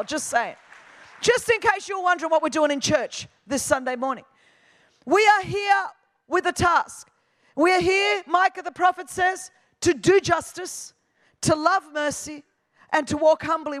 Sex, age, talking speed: female, 40-59, 165 wpm